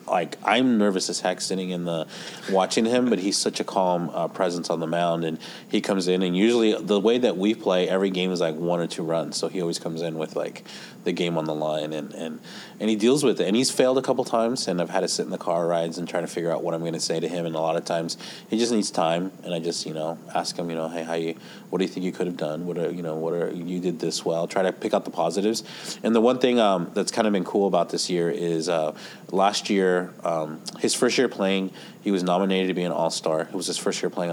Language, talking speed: English, 290 wpm